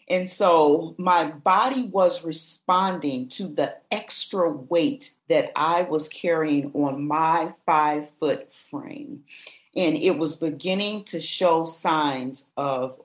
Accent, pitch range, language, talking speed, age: American, 150-185 Hz, English, 120 wpm, 40-59